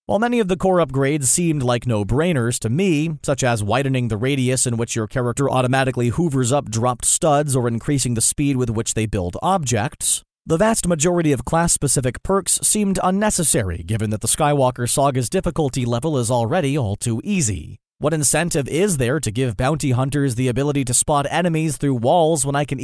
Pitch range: 120-165 Hz